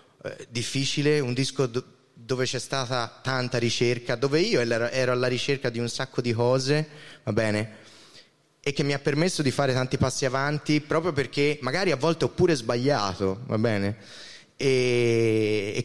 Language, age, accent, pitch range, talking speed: Italian, 20-39, native, 105-135 Hz, 160 wpm